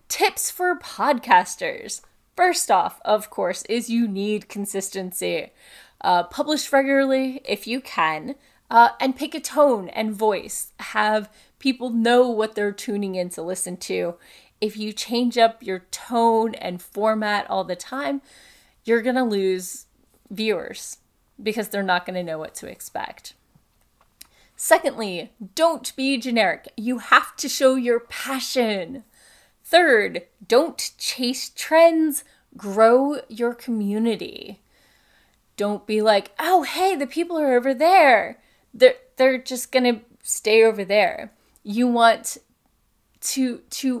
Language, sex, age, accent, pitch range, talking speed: English, female, 20-39, American, 210-275 Hz, 130 wpm